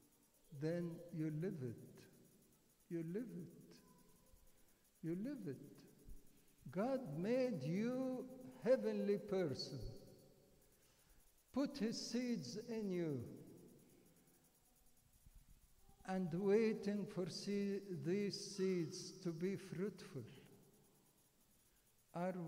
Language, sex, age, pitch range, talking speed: English, male, 60-79, 160-190 Hz, 80 wpm